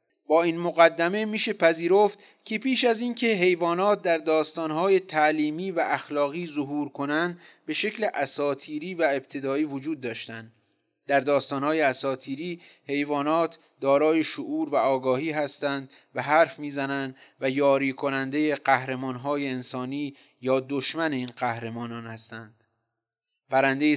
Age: 30-49